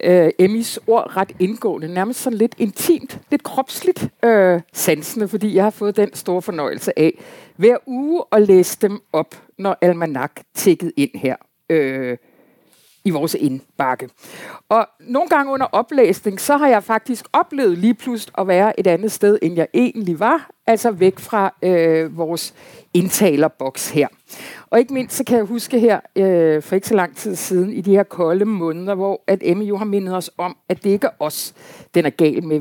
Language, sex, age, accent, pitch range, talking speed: Danish, female, 60-79, native, 165-230 Hz, 185 wpm